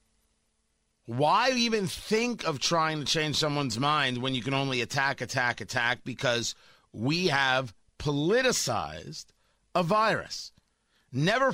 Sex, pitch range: male, 125-185 Hz